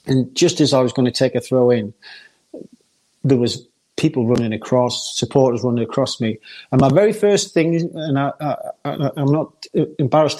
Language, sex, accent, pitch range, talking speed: English, male, British, 125-160 Hz, 165 wpm